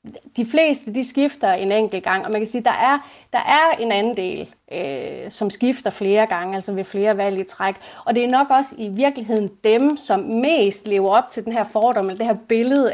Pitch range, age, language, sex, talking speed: 200-260 Hz, 30-49, Danish, female, 230 wpm